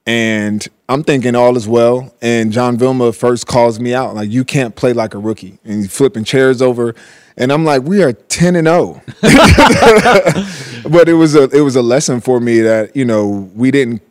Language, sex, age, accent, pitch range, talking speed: English, male, 20-39, American, 110-125 Hz, 200 wpm